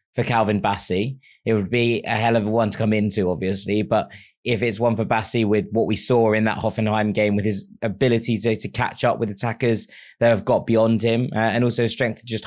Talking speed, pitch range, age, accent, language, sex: 235 wpm, 100-115 Hz, 20-39, British, English, male